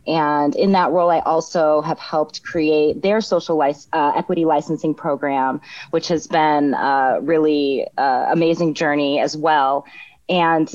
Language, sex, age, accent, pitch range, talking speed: English, female, 20-39, American, 155-180 Hz, 145 wpm